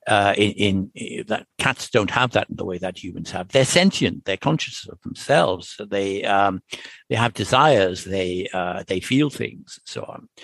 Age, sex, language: 60-79, male, English